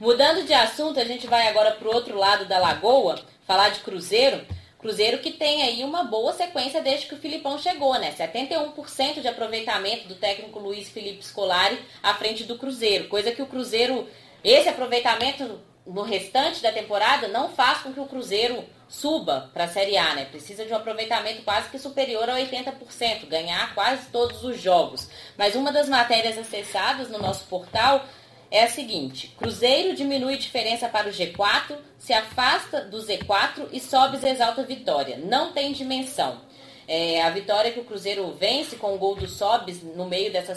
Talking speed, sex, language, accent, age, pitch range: 175 wpm, female, Portuguese, Brazilian, 10-29, 210-275 Hz